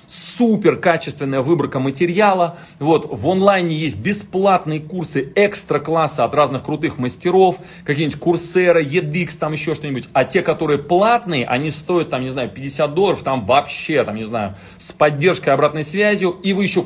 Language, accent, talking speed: Russian, native, 155 wpm